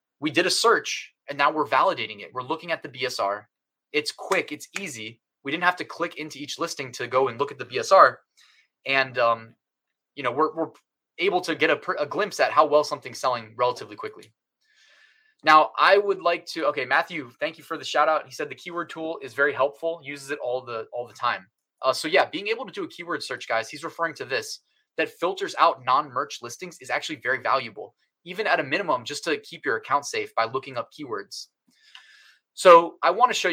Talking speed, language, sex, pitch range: 220 wpm, English, male, 135-180 Hz